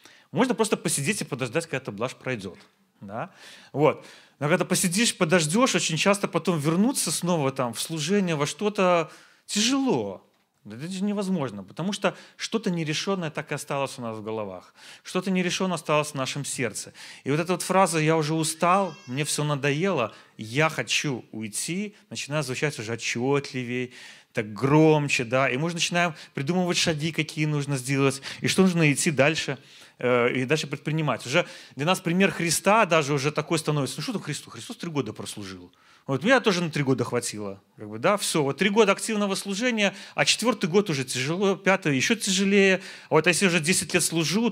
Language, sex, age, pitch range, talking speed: Russian, male, 30-49, 135-185 Hz, 175 wpm